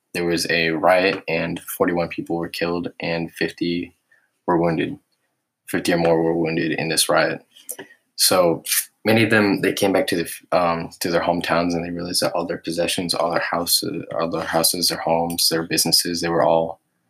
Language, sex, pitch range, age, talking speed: English, male, 85-90 Hz, 20-39, 190 wpm